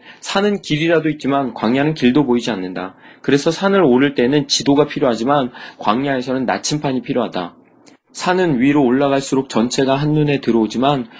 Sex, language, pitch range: male, Korean, 115-145 Hz